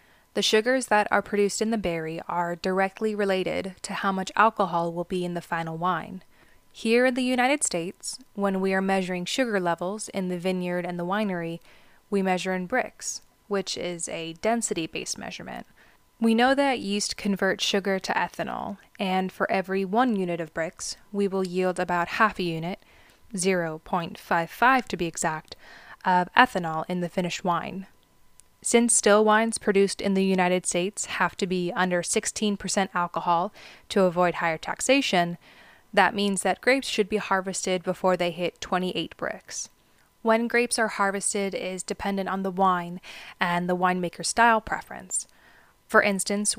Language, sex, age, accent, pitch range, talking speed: English, female, 20-39, American, 175-210 Hz, 160 wpm